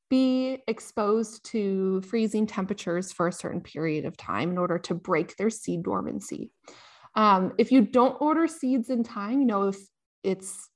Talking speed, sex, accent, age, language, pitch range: 165 wpm, female, American, 20-39, English, 195-265 Hz